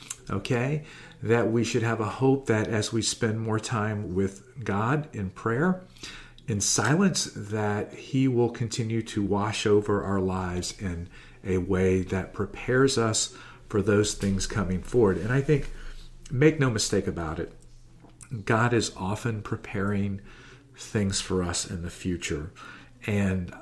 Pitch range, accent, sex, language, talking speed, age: 95-125 Hz, American, male, English, 145 wpm, 40-59